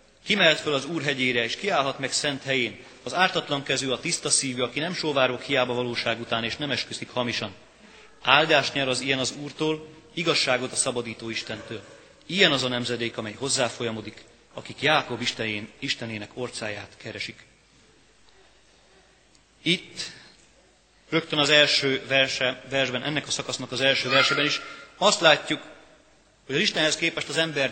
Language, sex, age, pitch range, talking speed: Hungarian, male, 30-49, 120-145 Hz, 150 wpm